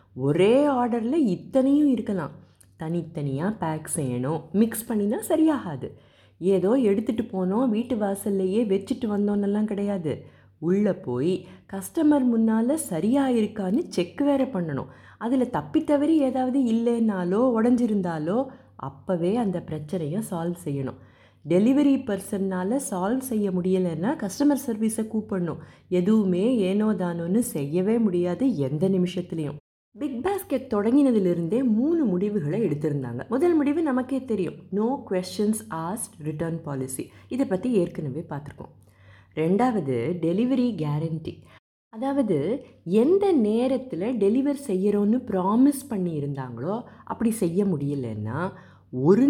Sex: female